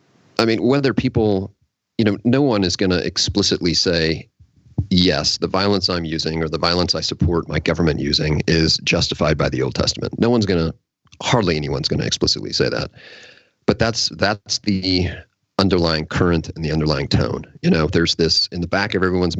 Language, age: English, 40-59